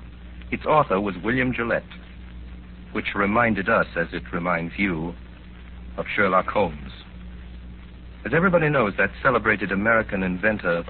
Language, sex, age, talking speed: English, male, 60-79, 125 wpm